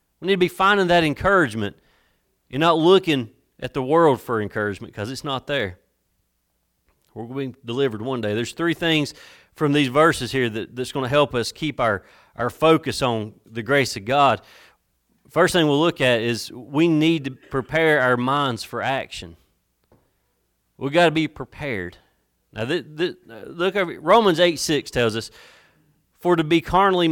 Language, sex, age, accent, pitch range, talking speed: English, male, 30-49, American, 105-150 Hz, 180 wpm